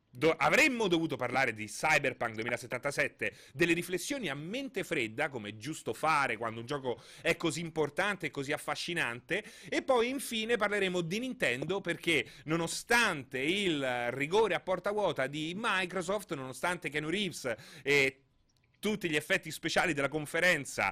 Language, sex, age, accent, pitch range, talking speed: Italian, male, 30-49, native, 140-195 Hz, 140 wpm